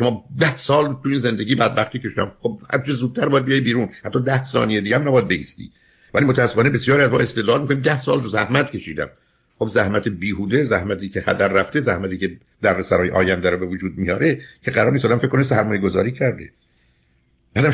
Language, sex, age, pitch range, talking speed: Persian, male, 50-69, 95-135 Hz, 180 wpm